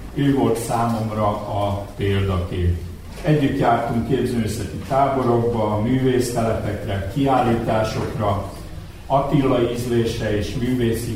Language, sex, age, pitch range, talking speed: Hungarian, male, 50-69, 100-125 Hz, 80 wpm